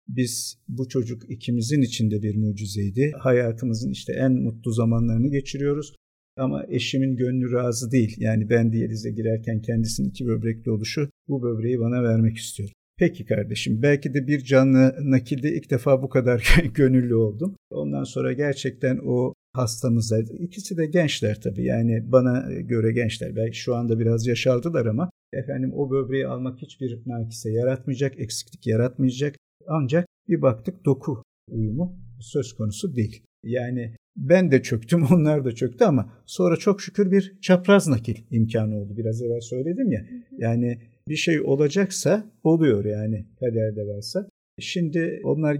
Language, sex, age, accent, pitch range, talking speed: Turkish, male, 50-69, native, 115-140 Hz, 145 wpm